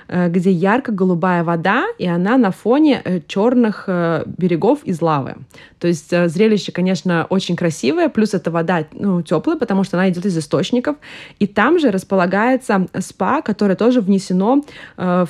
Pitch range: 170-210 Hz